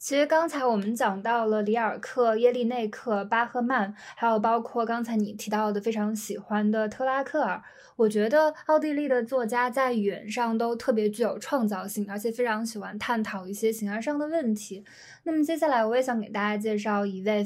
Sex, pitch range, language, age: female, 210-265 Hz, Chinese, 20-39